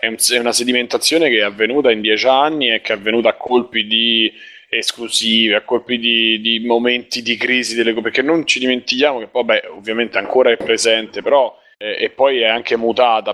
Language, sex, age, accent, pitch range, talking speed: Italian, male, 20-39, native, 110-130 Hz, 200 wpm